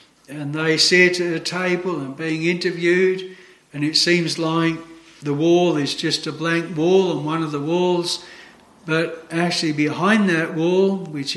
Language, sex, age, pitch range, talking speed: English, male, 60-79, 160-185 Hz, 165 wpm